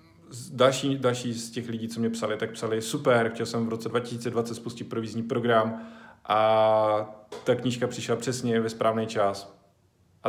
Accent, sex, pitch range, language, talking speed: native, male, 110-125 Hz, Czech, 165 wpm